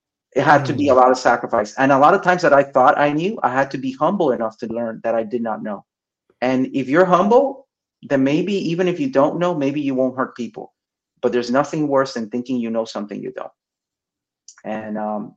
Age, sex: 30-49, male